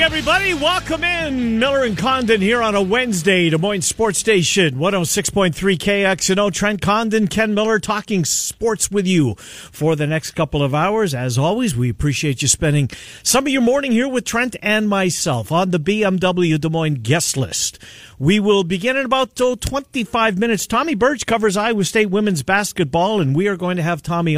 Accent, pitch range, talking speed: American, 135-205 Hz, 180 wpm